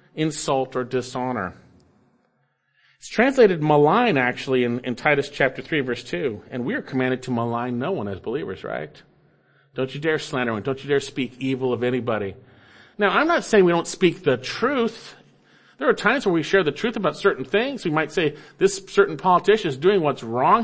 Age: 40-59